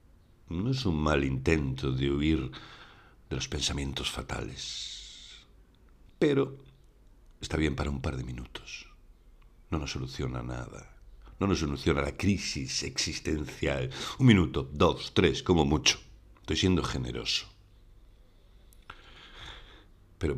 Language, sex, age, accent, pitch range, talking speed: Spanish, male, 60-79, Spanish, 75-100 Hz, 115 wpm